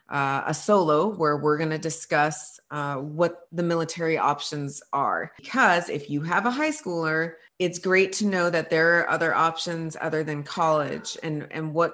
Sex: female